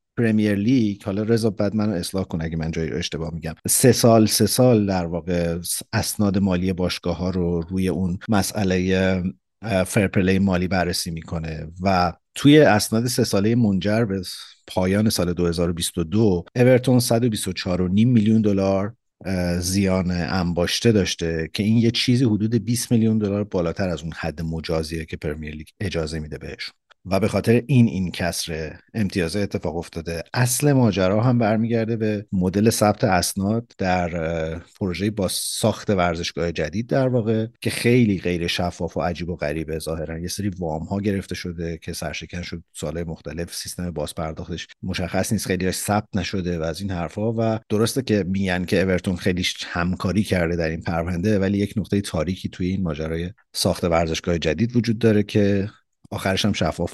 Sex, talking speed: male, 160 wpm